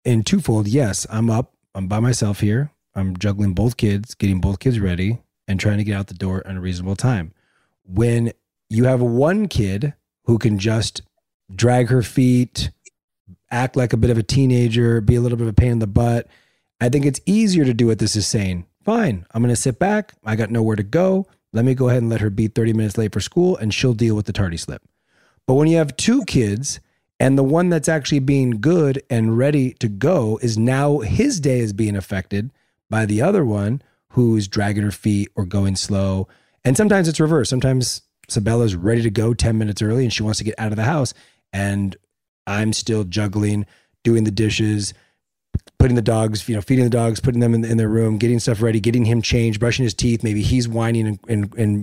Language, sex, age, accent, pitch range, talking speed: English, male, 30-49, American, 105-125 Hz, 220 wpm